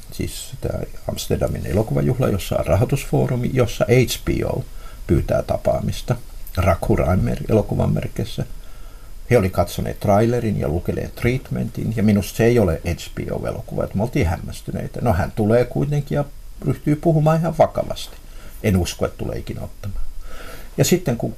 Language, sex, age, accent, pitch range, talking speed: Finnish, male, 60-79, native, 95-125 Hz, 135 wpm